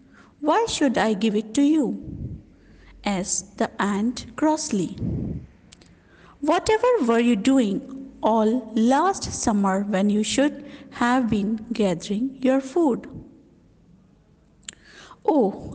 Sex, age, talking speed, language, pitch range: female, 50-69, 105 wpm, English, 215-265 Hz